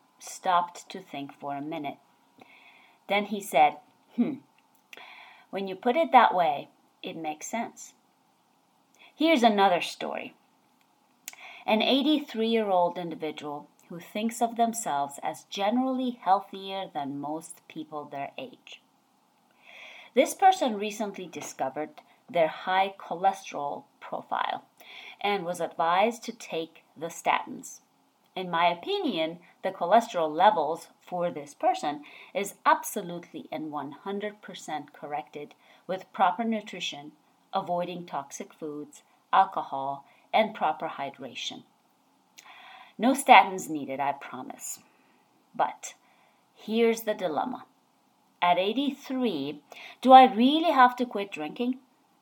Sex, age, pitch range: female, 30-49, 165-245 Hz